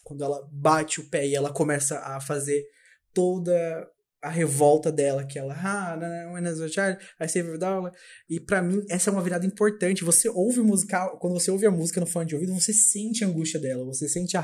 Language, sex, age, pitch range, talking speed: Portuguese, male, 20-39, 140-180 Hz, 185 wpm